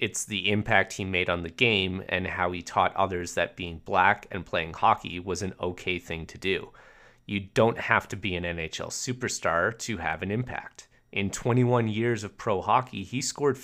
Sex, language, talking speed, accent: male, English, 200 wpm, American